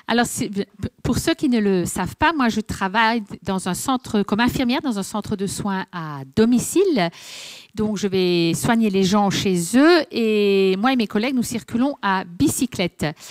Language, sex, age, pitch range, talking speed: French, female, 50-69, 190-255 Hz, 185 wpm